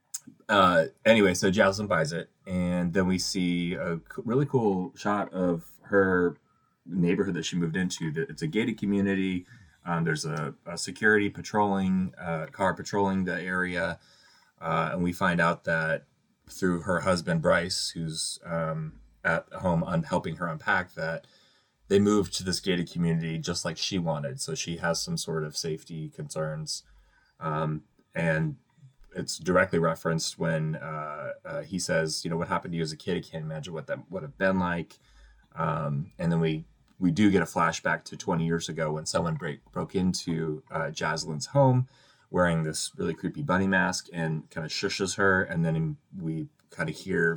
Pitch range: 80-100 Hz